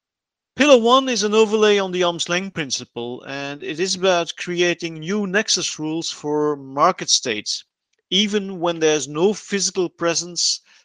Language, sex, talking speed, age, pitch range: English, male, 145 wpm, 50-69, 160-210 Hz